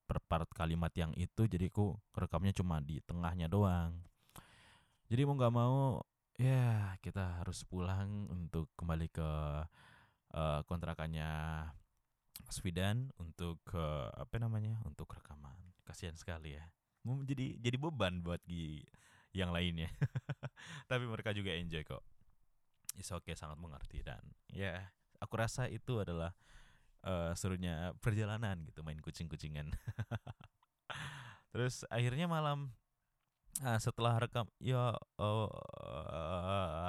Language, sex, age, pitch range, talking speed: Indonesian, male, 20-39, 85-120 Hz, 125 wpm